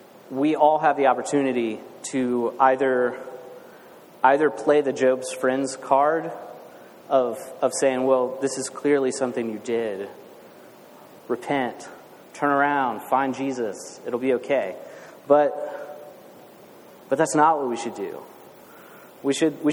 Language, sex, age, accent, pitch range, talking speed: English, male, 30-49, American, 125-150 Hz, 130 wpm